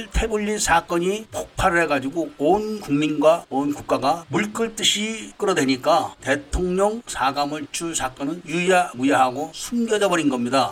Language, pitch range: Korean, 140-195 Hz